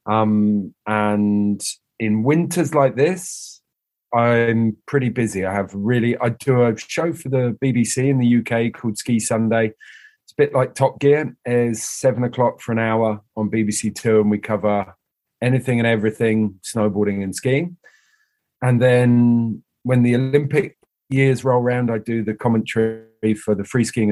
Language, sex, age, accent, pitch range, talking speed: English, male, 30-49, British, 105-130 Hz, 160 wpm